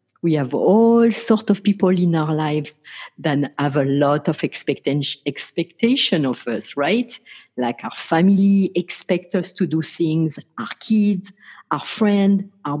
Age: 50-69